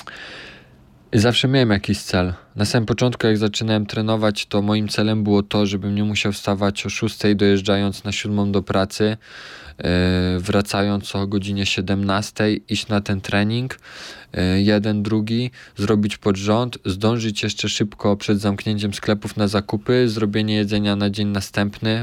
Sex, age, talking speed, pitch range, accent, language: male, 20-39, 145 wpm, 100-110 Hz, native, Polish